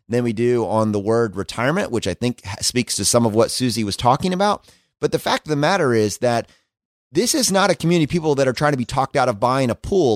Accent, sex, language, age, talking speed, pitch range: American, male, English, 30-49, 265 wpm, 120-160 Hz